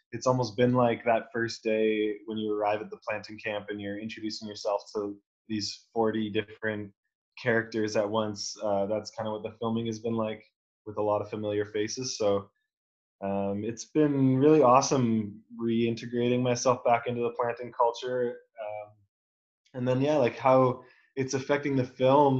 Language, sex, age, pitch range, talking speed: English, male, 20-39, 105-125 Hz, 170 wpm